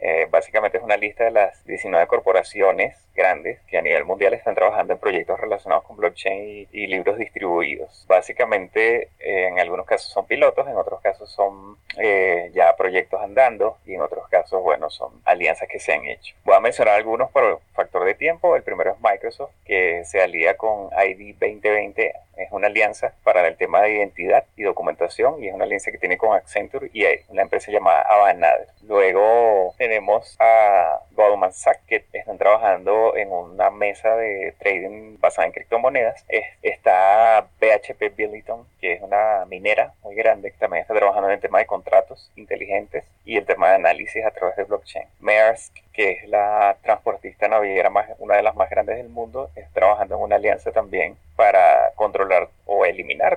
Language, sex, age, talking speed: Spanish, male, 30-49, 180 wpm